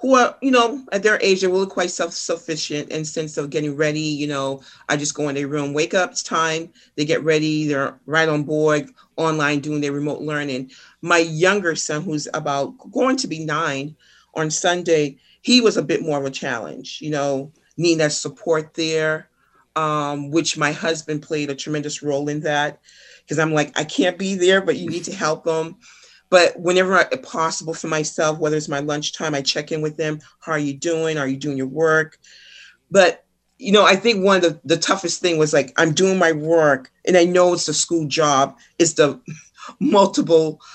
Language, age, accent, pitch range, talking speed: English, 40-59, American, 150-175 Hz, 205 wpm